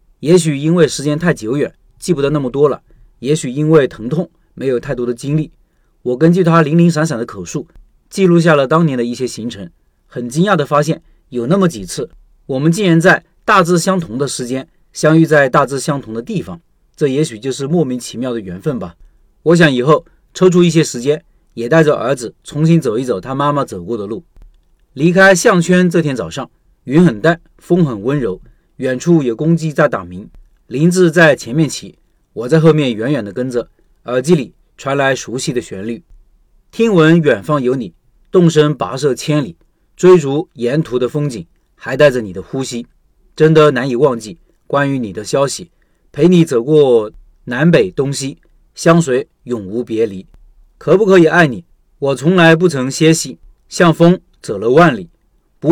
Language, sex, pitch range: Chinese, male, 125-170 Hz